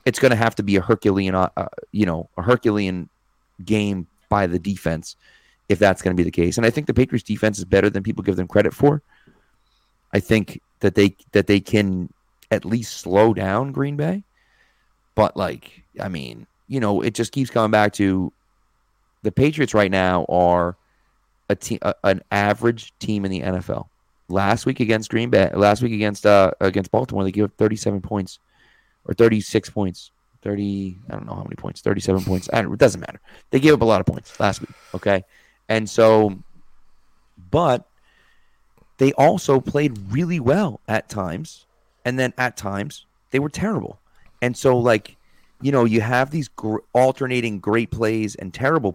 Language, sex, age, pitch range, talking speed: English, male, 30-49, 100-120 Hz, 185 wpm